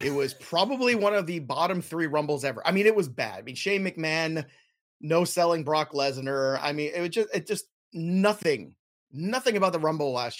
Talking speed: 210 wpm